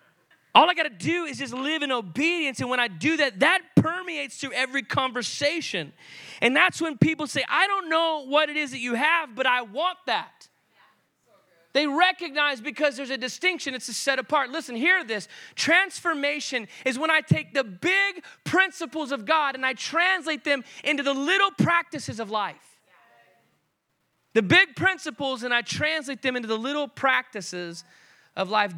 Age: 20-39